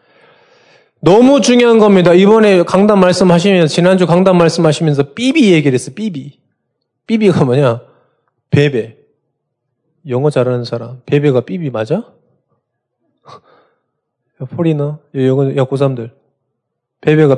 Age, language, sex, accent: 20-39, Korean, male, native